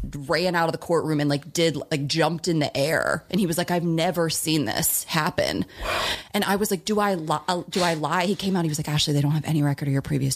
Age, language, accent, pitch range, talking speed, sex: 30-49, English, American, 150-180 Hz, 270 wpm, female